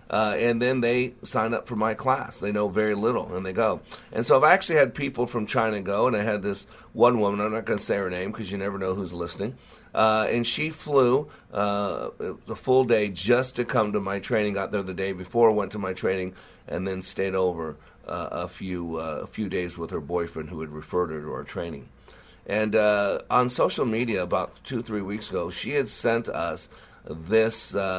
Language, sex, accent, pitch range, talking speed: English, male, American, 95-120 Hz, 220 wpm